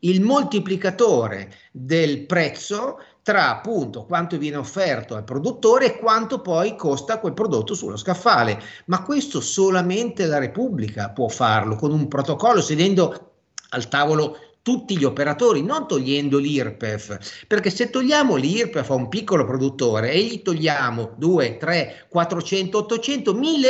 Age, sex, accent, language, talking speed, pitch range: 40-59, male, native, Italian, 135 wpm, 135-215 Hz